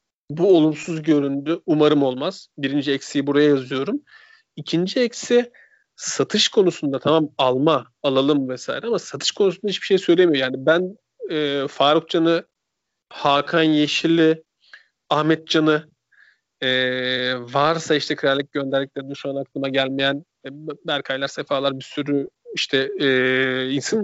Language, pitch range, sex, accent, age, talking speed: Turkish, 140-175 Hz, male, native, 40-59, 120 wpm